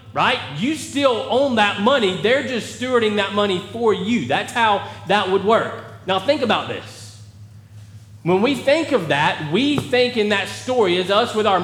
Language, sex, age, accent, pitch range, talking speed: English, male, 30-49, American, 180-235 Hz, 185 wpm